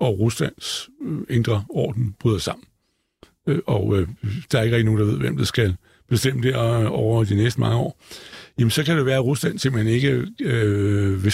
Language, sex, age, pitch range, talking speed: Danish, male, 60-79, 110-140 Hz, 190 wpm